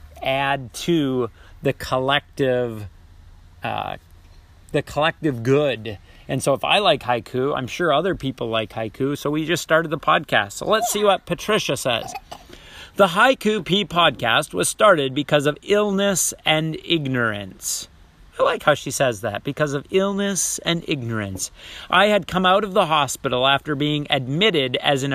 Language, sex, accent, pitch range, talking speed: English, male, American, 120-180 Hz, 155 wpm